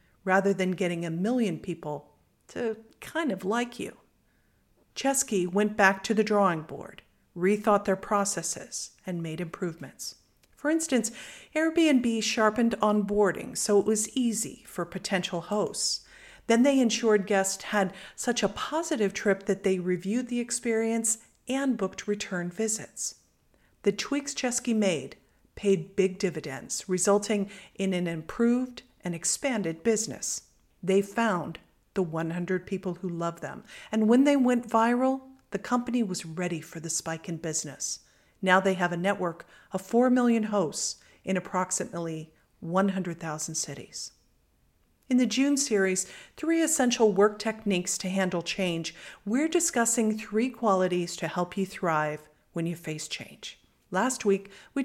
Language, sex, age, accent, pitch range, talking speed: English, female, 50-69, American, 180-230 Hz, 140 wpm